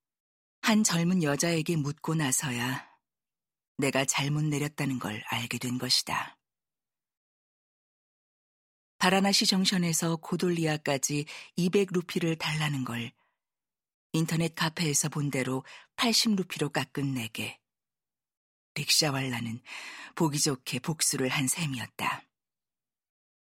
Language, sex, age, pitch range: Korean, female, 40-59, 140-180 Hz